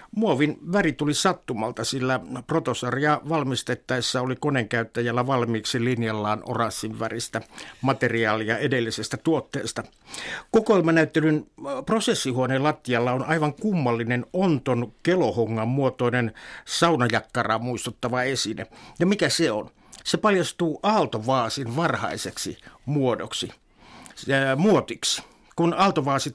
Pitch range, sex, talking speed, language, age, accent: 120-150 Hz, male, 95 wpm, Finnish, 60-79, native